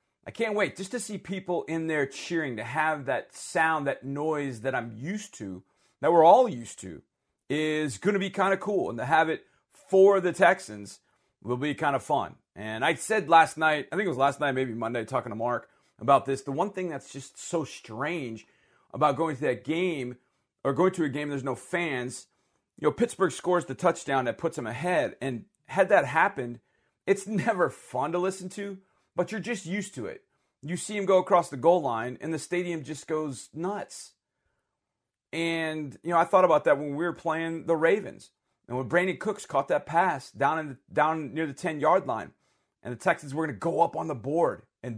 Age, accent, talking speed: 40-59, American, 215 wpm